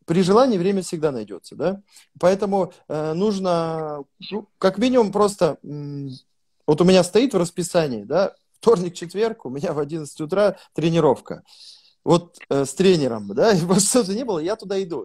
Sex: male